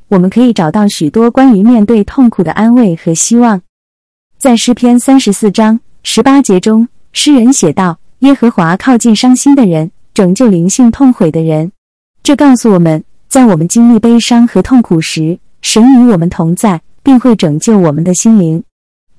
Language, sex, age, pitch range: Chinese, female, 20-39, 180-245 Hz